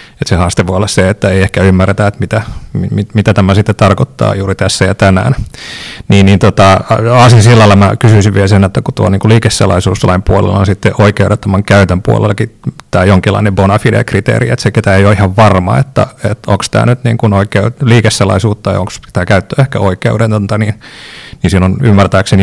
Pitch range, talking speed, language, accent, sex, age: 95-115 Hz, 185 wpm, Finnish, native, male, 30-49